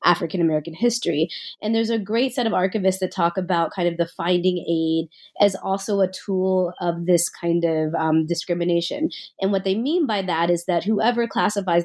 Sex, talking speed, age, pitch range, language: female, 185 wpm, 20-39, 165-200 Hz, English